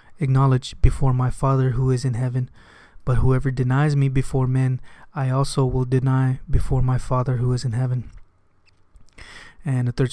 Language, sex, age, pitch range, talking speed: English, male, 20-39, 125-135 Hz, 165 wpm